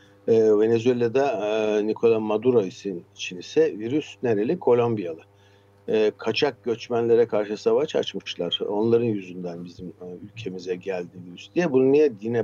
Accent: native